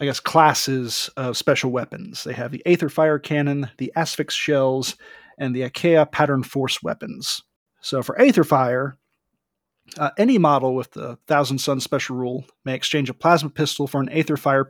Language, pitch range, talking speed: English, 130-175 Hz, 165 wpm